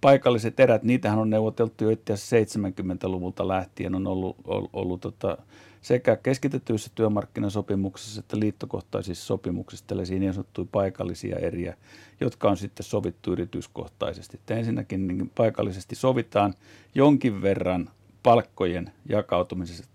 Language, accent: English, Finnish